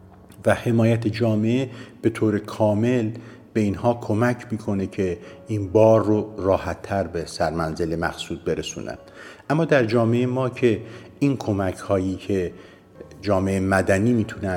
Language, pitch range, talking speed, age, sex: Persian, 90-110 Hz, 130 wpm, 50-69, male